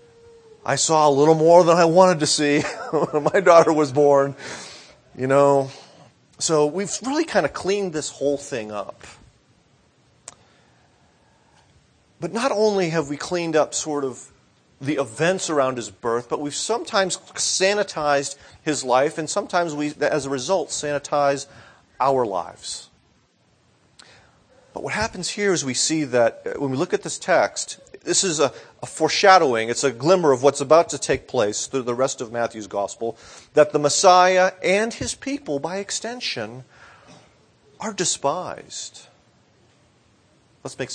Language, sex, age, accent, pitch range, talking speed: English, male, 30-49, American, 130-180 Hz, 150 wpm